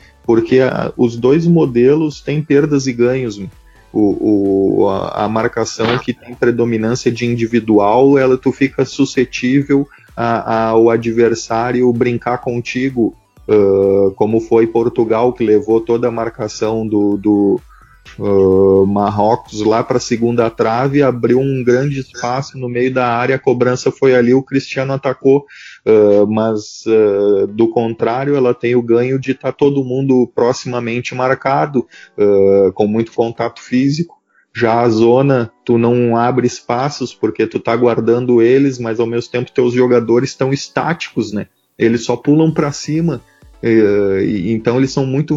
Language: Portuguese